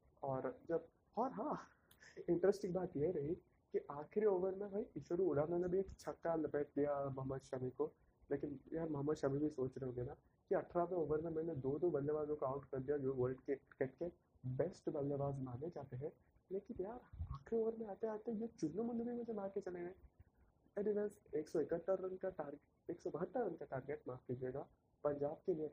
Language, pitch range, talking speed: Hindi, 140-190 Hz, 200 wpm